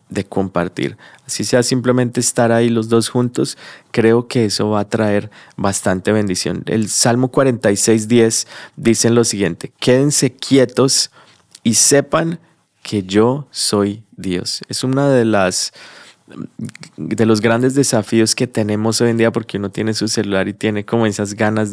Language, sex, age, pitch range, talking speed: Spanish, male, 20-39, 105-120 Hz, 155 wpm